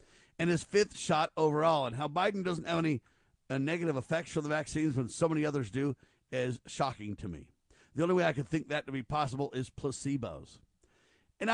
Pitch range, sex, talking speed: 130-175 Hz, male, 205 wpm